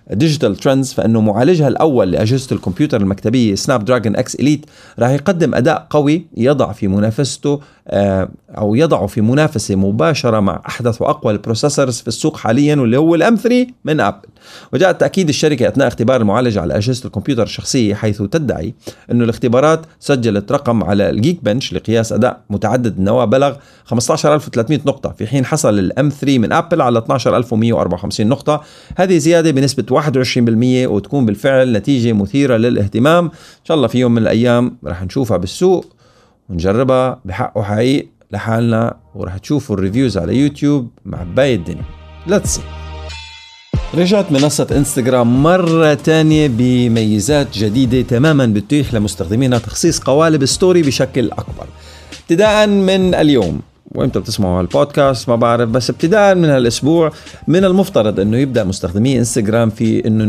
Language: Arabic